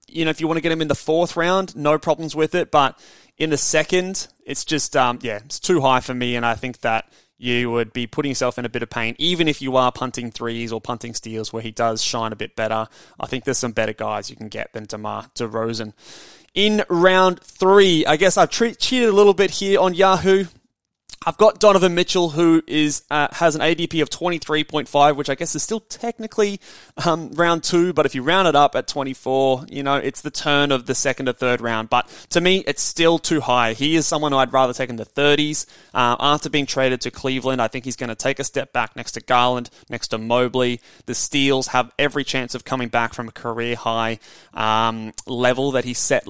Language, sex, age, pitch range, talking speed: English, male, 20-39, 120-165 Hz, 230 wpm